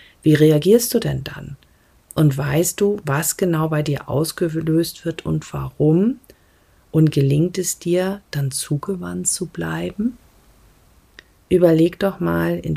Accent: German